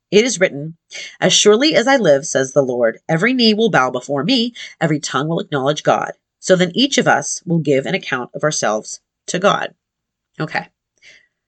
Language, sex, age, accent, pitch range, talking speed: English, female, 30-49, American, 145-195 Hz, 190 wpm